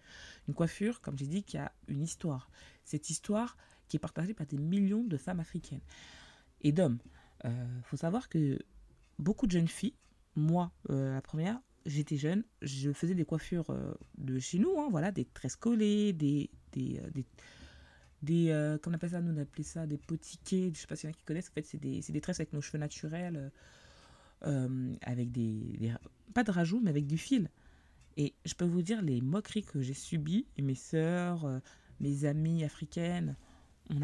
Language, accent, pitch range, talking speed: French, French, 145-185 Hz, 195 wpm